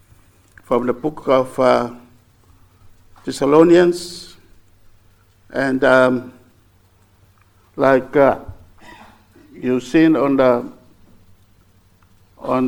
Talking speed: 70 wpm